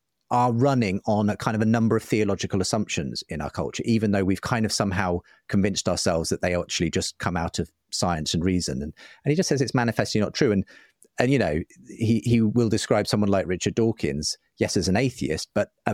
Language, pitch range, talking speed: English, 90-115 Hz, 220 wpm